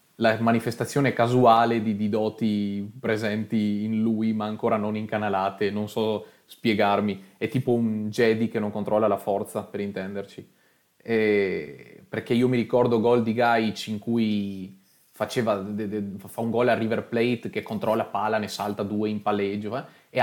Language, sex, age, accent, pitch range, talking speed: Italian, male, 20-39, native, 105-115 Hz, 165 wpm